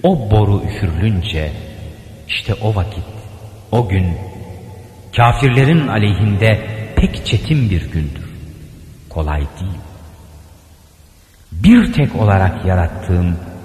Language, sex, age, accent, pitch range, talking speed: Turkish, male, 50-69, native, 85-110 Hz, 90 wpm